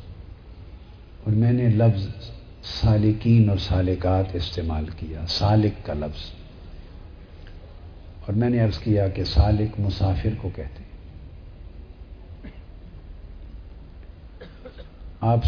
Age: 60-79